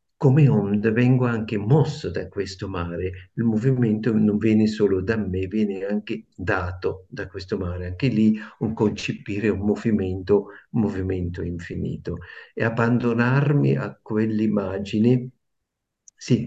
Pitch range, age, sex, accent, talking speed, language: 100-125 Hz, 50-69, male, native, 130 wpm, Italian